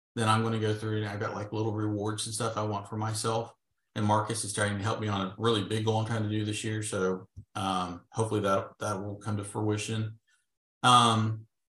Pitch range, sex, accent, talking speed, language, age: 105-125 Hz, male, American, 235 wpm, English, 40-59